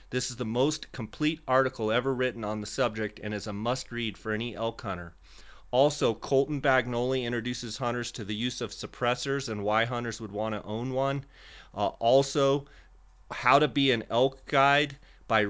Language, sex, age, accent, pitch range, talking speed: English, male, 30-49, American, 110-130 Hz, 180 wpm